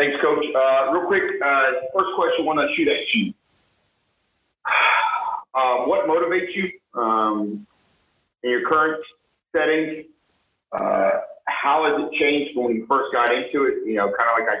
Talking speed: 160 wpm